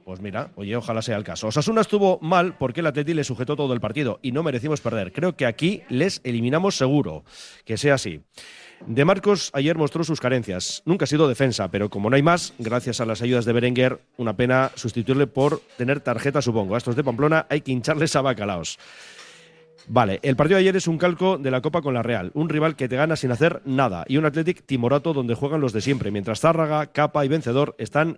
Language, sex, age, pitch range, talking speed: Spanish, male, 40-59, 115-145 Hz, 225 wpm